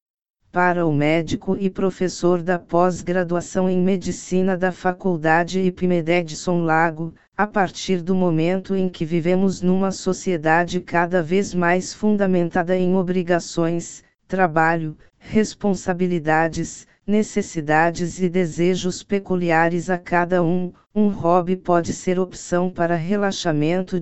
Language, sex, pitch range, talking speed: Portuguese, female, 175-190 Hz, 110 wpm